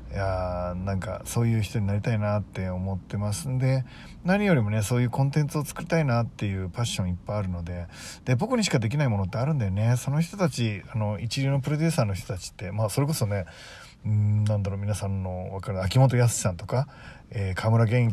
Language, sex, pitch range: Japanese, male, 100-130 Hz